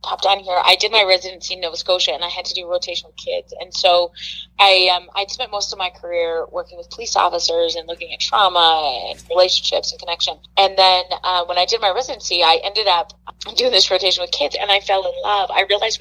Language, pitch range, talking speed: English, 175-255 Hz, 235 wpm